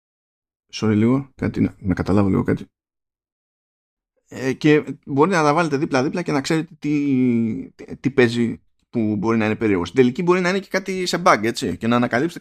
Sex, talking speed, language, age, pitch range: male, 190 wpm, Greek, 20-39, 105-155 Hz